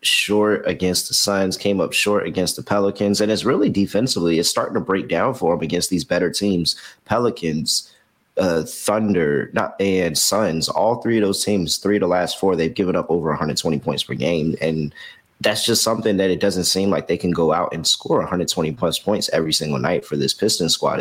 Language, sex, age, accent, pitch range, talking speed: English, male, 30-49, American, 80-100 Hz, 210 wpm